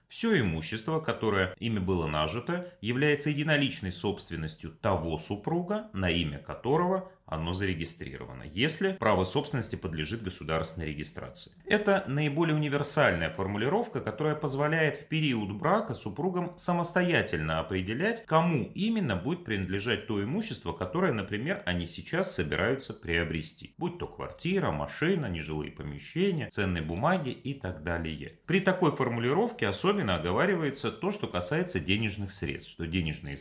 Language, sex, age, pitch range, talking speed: Russian, male, 30-49, 90-150 Hz, 125 wpm